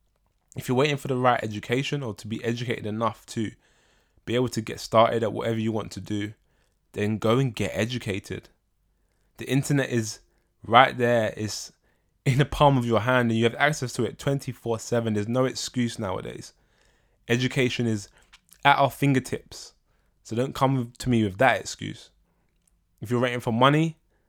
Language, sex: English, male